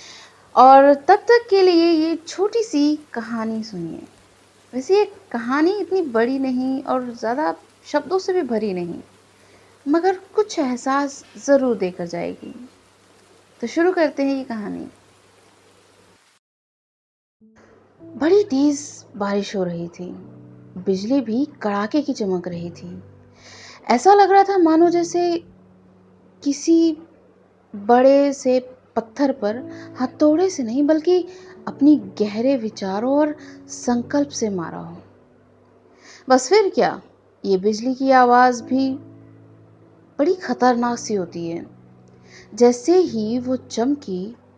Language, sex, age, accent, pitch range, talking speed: Hindi, female, 20-39, native, 185-295 Hz, 120 wpm